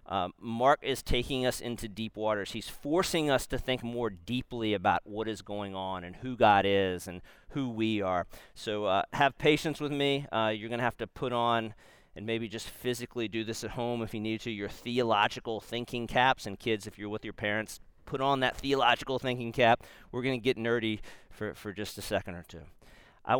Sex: male